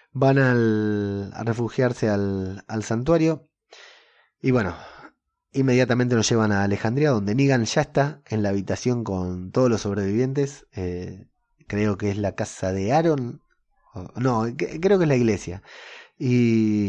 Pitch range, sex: 95-125 Hz, male